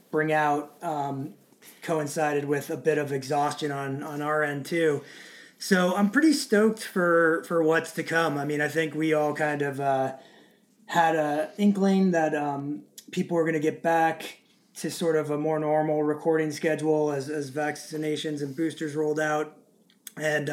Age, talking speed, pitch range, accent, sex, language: 30-49, 170 wpm, 150-170 Hz, American, male, English